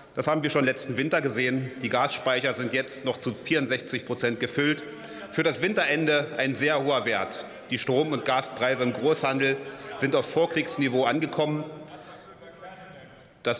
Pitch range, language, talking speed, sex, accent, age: 120-145 Hz, German, 150 wpm, male, German, 40-59